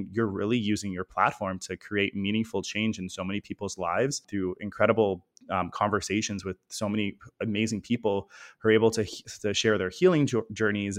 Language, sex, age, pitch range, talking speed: English, male, 20-39, 100-115 Hz, 175 wpm